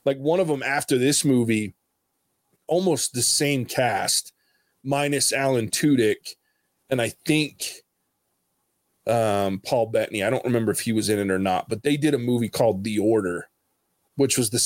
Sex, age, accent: male, 20-39, American